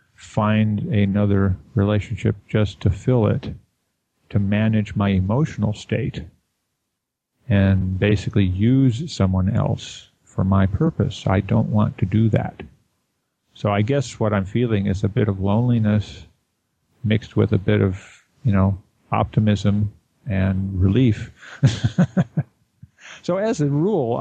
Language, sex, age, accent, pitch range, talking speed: English, male, 50-69, American, 105-125 Hz, 125 wpm